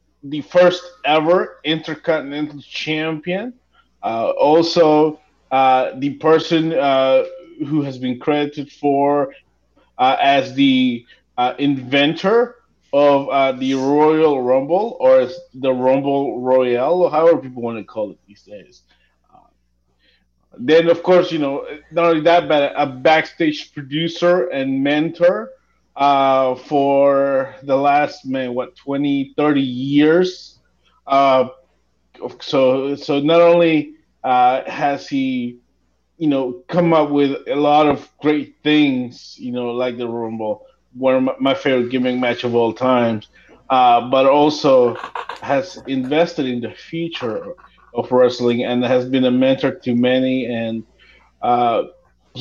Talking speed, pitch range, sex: 130 wpm, 125-155 Hz, male